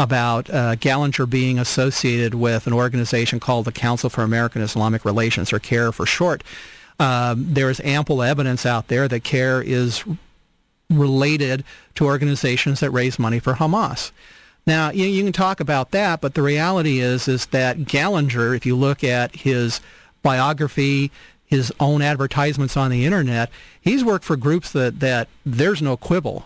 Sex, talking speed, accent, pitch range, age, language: male, 165 wpm, American, 130-160 Hz, 40-59, English